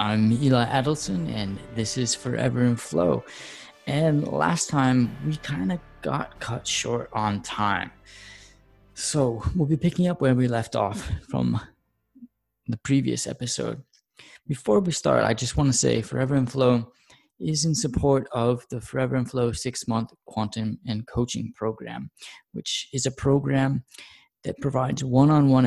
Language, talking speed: English, 150 wpm